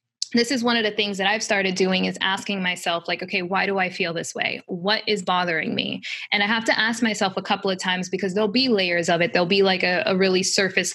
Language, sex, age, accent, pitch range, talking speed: English, female, 20-39, American, 185-225 Hz, 265 wpm